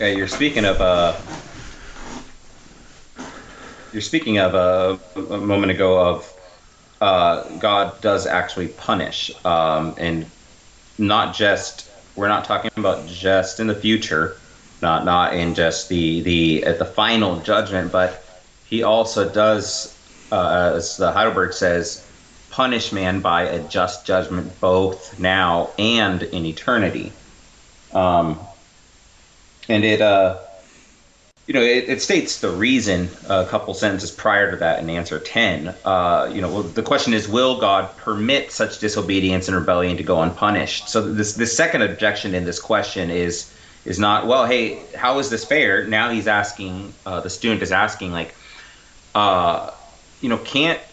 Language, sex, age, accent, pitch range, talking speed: English, male, 30-49, American, 90-110 Hz, 150 wpm